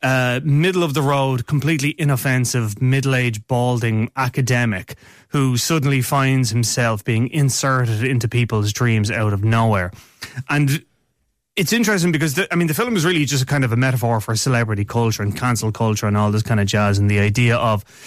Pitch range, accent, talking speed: 115-135 Hz, Irish, 165 wpm